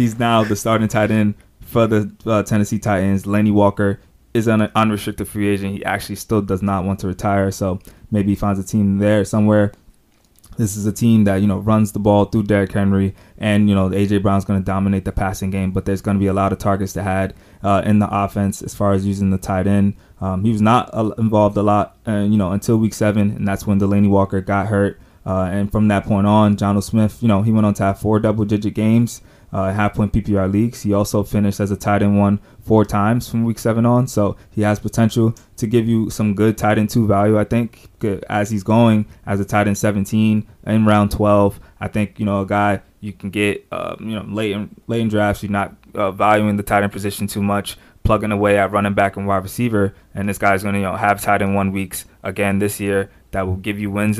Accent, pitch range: American, 100-105 Hz